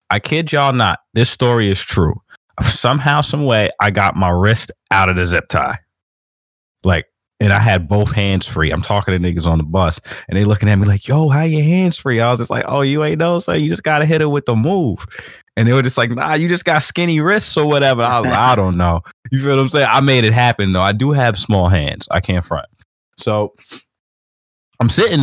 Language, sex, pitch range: English, male, 95-135 Hz